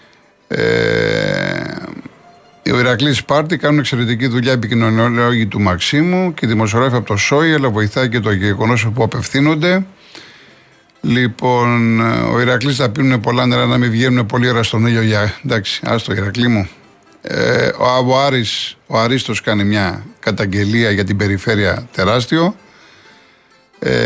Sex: male